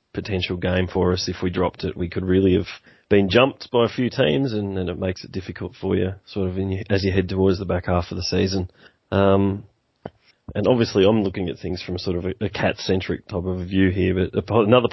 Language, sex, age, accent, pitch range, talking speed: English, male, 30-49, Australian, 95-105 Hz, 235 wpm